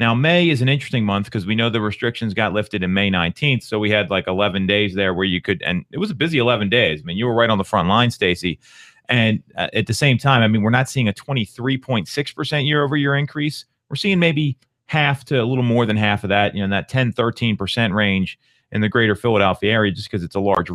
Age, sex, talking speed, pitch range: 30-49, male, 270 wpm, 105-135 Hz